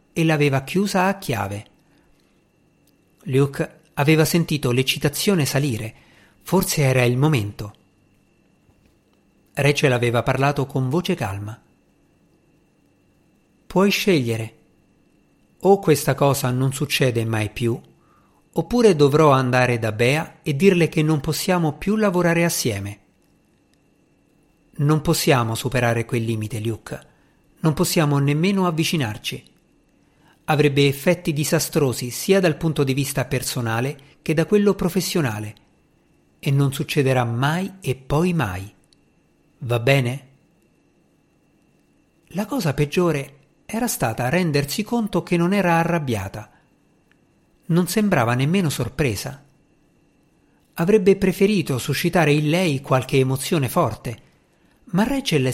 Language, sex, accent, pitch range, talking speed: Italian, male, native, 125-175 Hz, 105 wpm